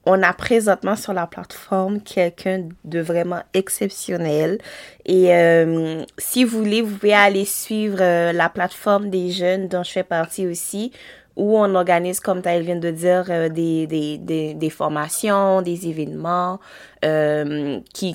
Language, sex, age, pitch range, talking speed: French, female, 20-39, 160-195 Hz, 155 wpm